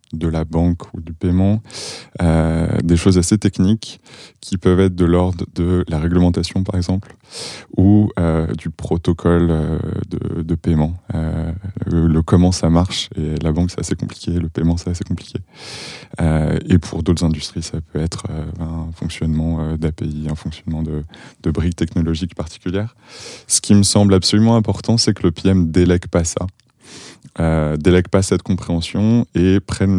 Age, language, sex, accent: 20-39, French, male, French